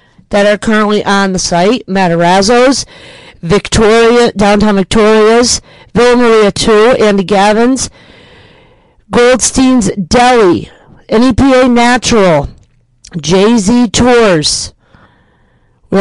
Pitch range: 180-235 Hz